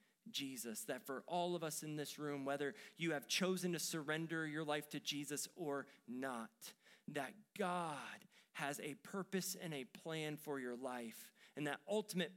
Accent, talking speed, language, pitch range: American, 170 wpm, English, 140-200 Hz